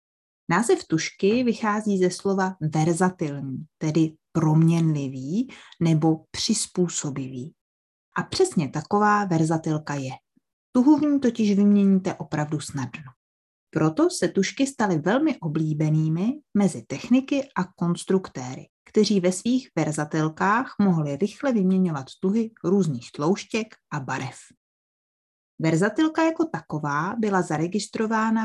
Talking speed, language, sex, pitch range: 105 wpm, Czech, female, 155-220 Hz